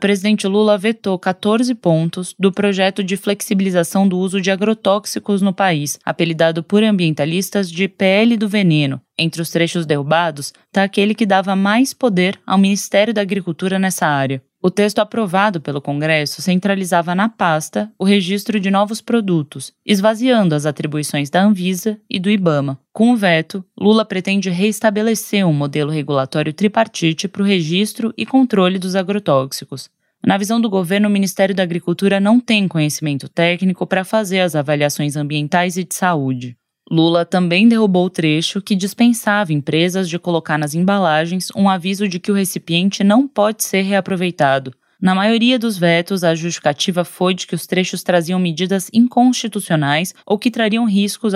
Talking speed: 160 wpm